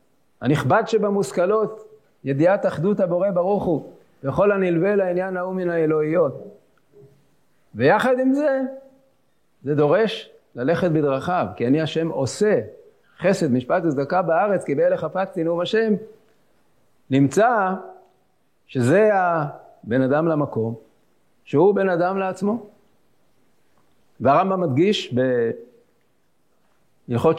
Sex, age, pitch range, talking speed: male, 50-69, 160-220 Hz, 95 wpm